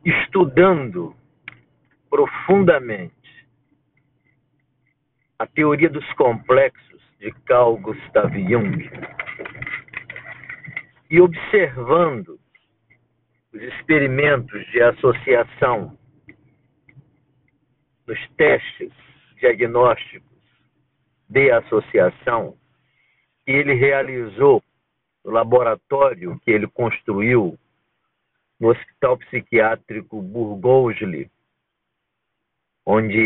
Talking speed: 60 wpm